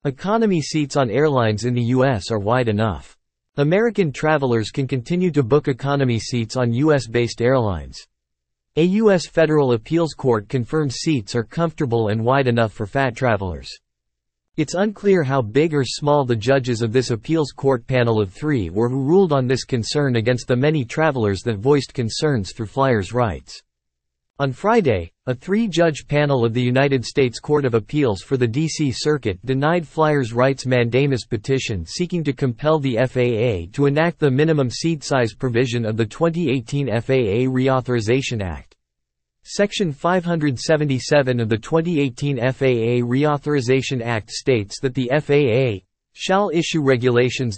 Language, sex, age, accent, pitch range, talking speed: English, male, 40-59, American, 120-150 Hz, 155 wpm